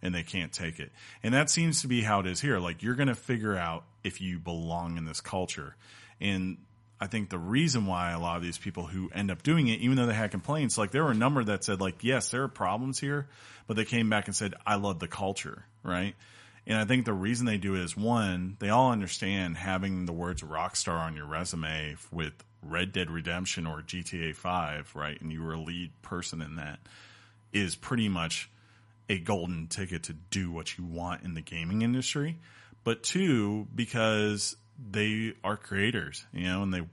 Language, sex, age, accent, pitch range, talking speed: English, male, 30-49, American, 85-110 Hz, 215 wpm